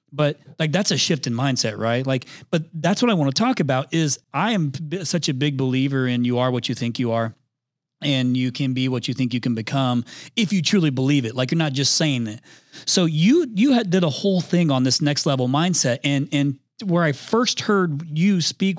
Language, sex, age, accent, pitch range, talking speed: English, male, 30-49, American, 125-160 Hz, 240 wpm